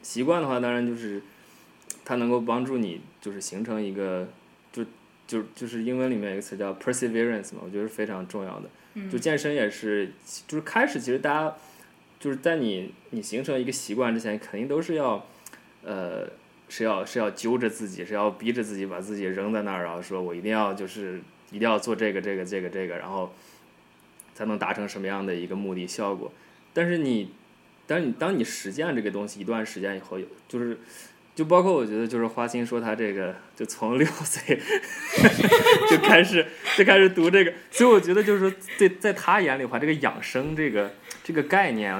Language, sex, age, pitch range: Chinese, male, 20-39, 105-160 Hz